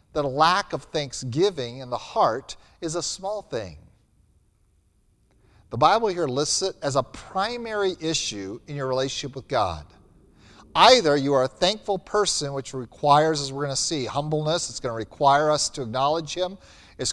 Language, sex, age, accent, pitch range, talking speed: English, male, 50-69, American, 105-160 Hz, 170 wpm